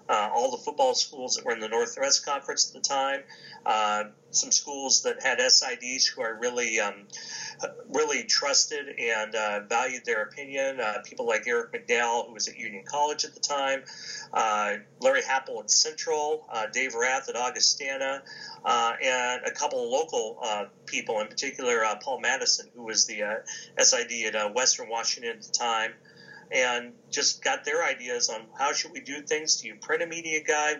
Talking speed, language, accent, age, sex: 185 wpm, English, American, 40-59, male